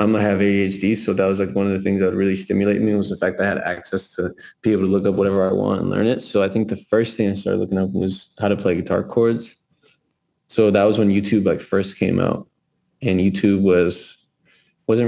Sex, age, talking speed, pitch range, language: male, 20-39, 260 wpm, 95-110 Hz, English